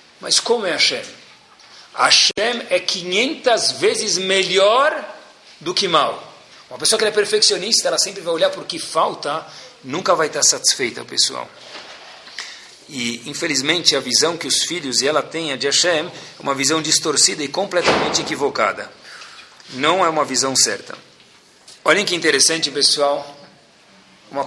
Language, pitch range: Portuguese, 125-160 Hz